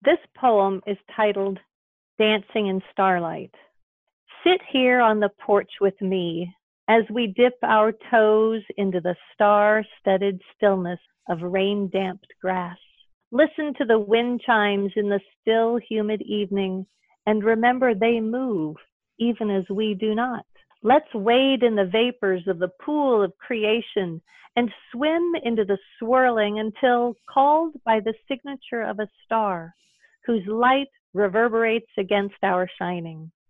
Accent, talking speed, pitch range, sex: American, 135 wpm, 195-250 Hz, female